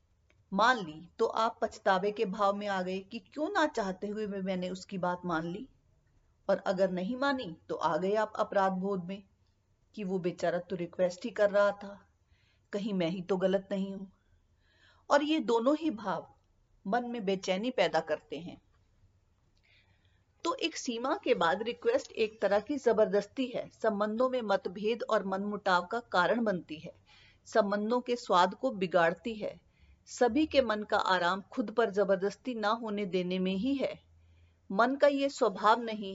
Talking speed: 170 wpm